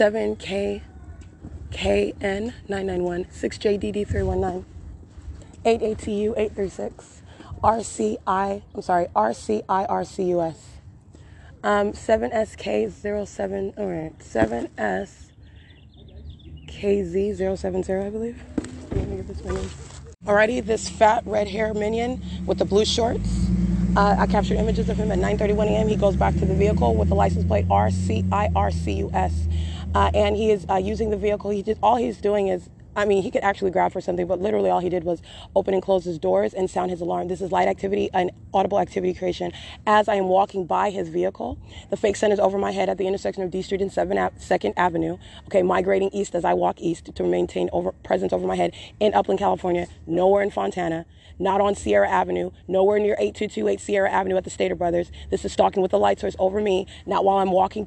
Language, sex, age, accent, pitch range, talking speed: English, female, 20-39, American, 165-205 Hz, 165 wpm